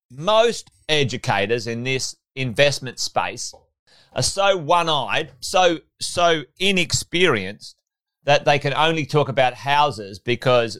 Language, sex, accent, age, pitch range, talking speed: English, male, Australian, 30-49, 125-170 Hz, 110 wpm